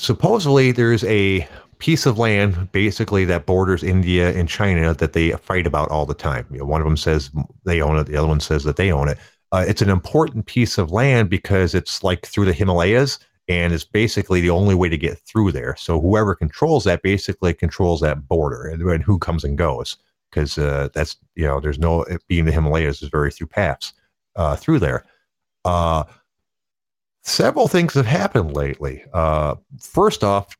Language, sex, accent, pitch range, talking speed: English, male, American, 80-105 Hz, 190 wpm